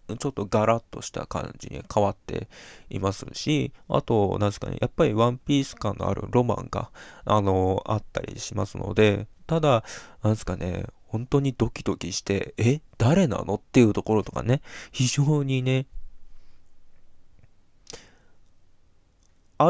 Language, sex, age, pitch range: Japanese, male, 20-39, 95-130 Hz